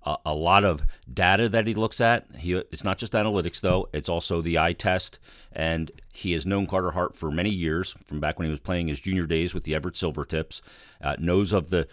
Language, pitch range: English, 85-110 Hz